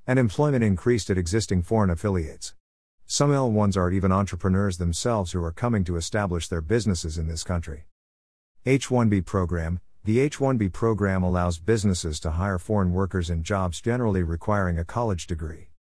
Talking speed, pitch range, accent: 155 wpm, 85-105 Hz, American